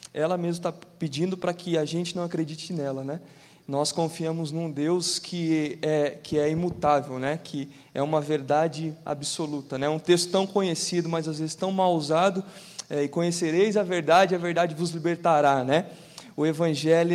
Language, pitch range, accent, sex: Portuguese, 150-175 Hz, Brazilian, male